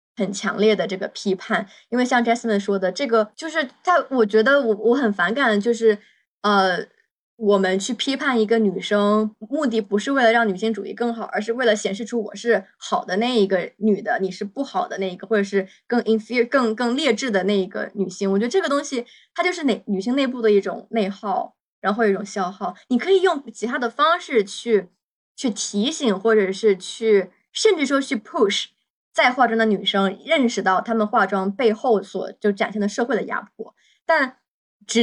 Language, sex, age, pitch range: Chinese, female, 20-39, 200-255 Hz